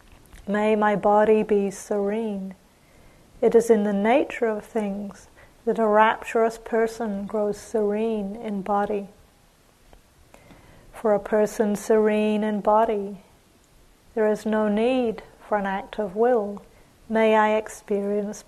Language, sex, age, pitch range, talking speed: English, female, 40-59, 205-225 Hz, 125 wpm